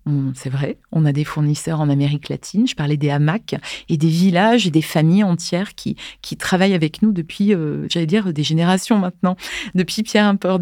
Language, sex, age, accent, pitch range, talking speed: French, female, 30-49, French, 165-200 Hz, 190 wpm